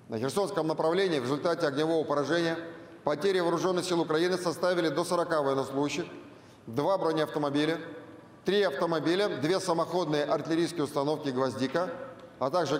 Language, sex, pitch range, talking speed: Russian, male, 145-180 Hz, 120 wpm